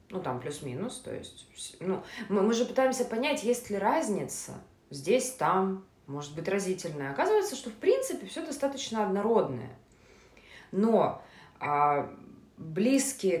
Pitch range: 155-225 Hz